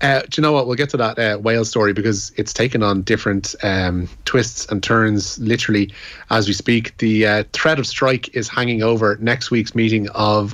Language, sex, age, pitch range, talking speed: English, male, 30-49, 105-120 Hz, 210 wpm